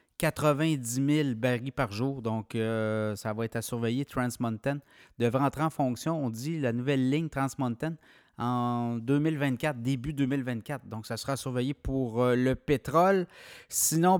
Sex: male